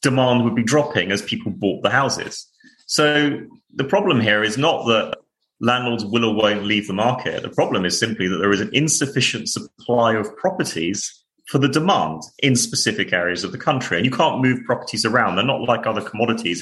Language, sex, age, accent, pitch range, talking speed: English, male, 30-49, British, 105-140 Hz, 200 wpm